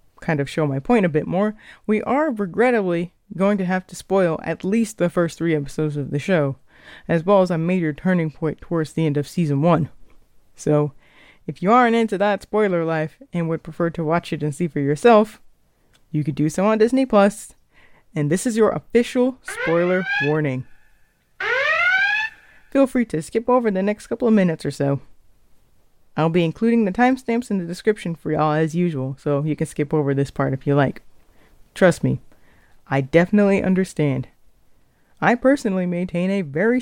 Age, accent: 20-39, American